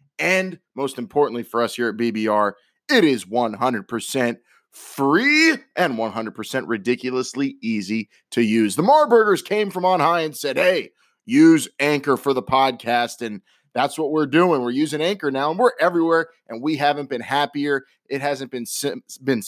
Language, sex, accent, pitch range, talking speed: English, male, American, 120-175 Hz, 165 wpm